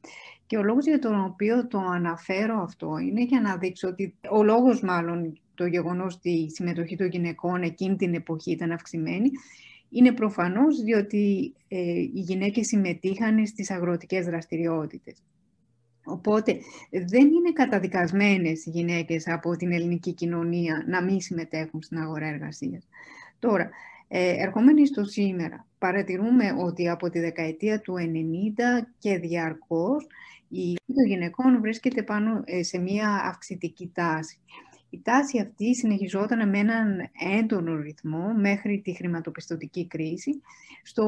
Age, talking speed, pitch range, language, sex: 20-39, 135 wpm, 170-220 Hz, Greek, female